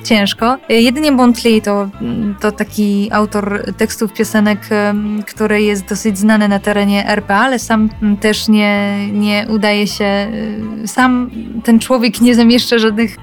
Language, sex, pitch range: Polish, female, 210-230 Hz